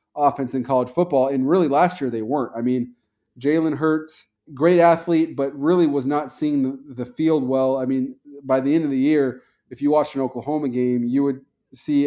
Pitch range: 125-145 Hz